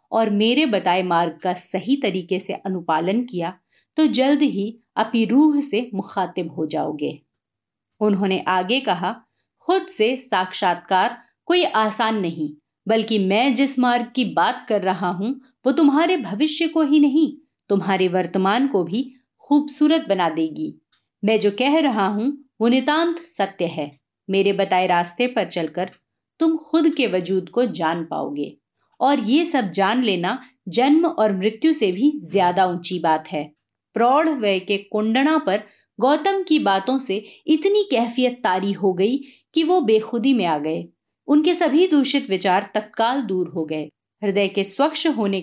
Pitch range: 185-280 Hz